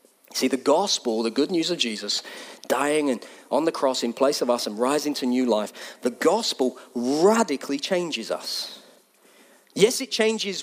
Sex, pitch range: male, 145-210 Hz